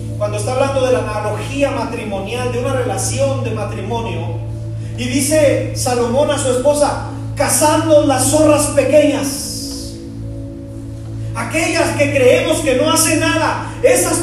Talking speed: 125 wpm